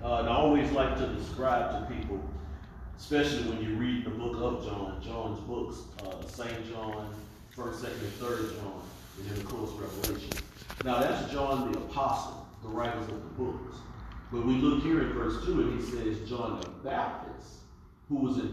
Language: English